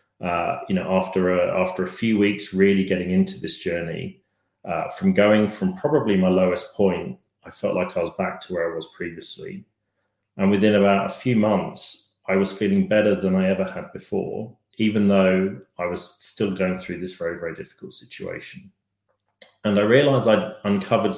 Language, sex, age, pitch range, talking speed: English, male, 30-49, 95-110 Hz, 185 wpm